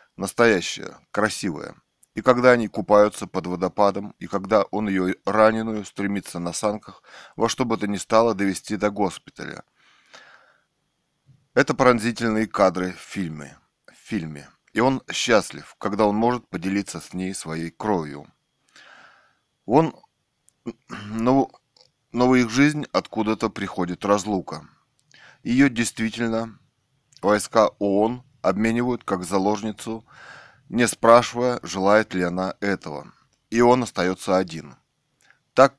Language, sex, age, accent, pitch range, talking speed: Russian, male, 20-39, native, 95-115 Hz, 110 wpm